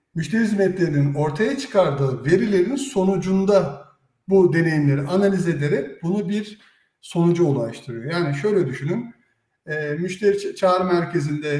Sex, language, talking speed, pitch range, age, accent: male, Turkish, 105 wpm, 140-190 Hz, 60-79, native